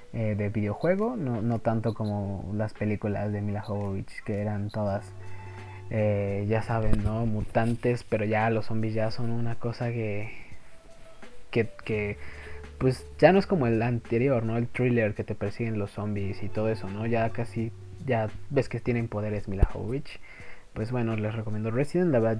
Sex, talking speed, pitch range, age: male, 175 wpm, 105-120 Hz, 20-39